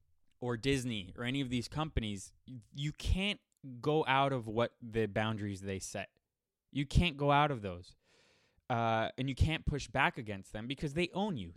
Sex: male